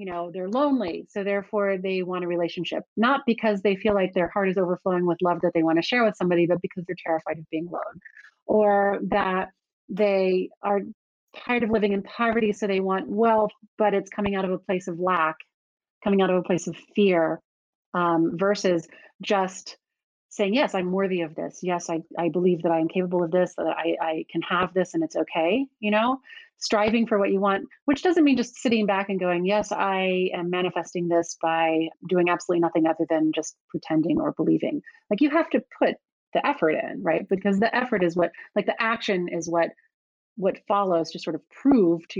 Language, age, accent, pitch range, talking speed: English, 30-49, American, 175-215 Hz, 210 wpm